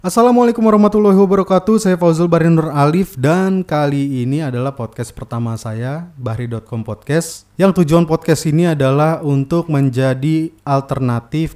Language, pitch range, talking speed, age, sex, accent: Indonesian, 110-155 Hz, 125 wpm, 20-39, male, native